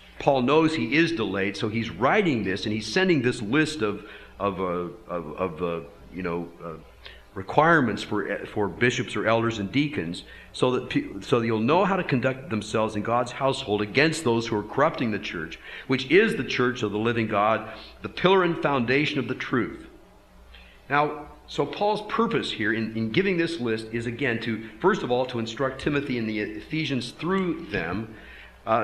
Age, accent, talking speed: 50-69, American, 190 wpm